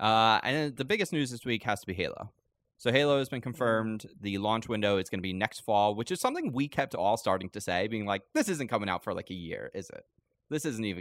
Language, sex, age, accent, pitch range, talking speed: English, male, 20-39, American, 95-120 Hz, 260 wpm